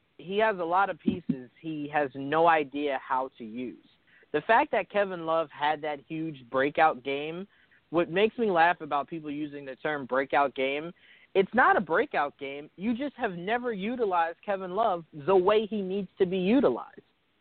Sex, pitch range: male, 140-180 Hz